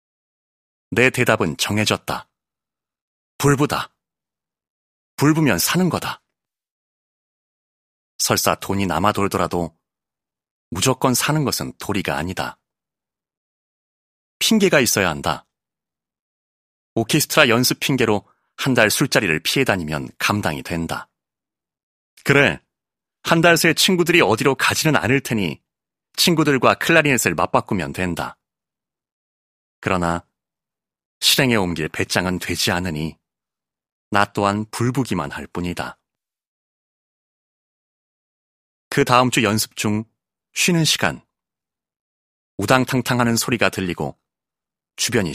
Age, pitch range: 30-49, 80-135 Hz